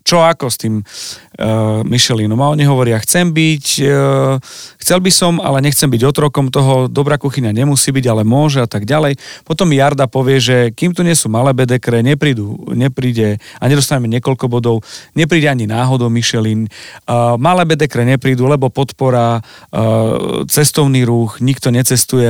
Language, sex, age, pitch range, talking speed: Slovak, male, 40-59, 120-145 Hz, 160 wpm